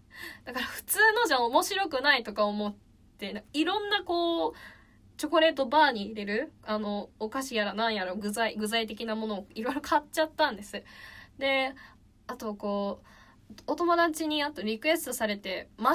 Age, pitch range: 10-29, 215-315 Hz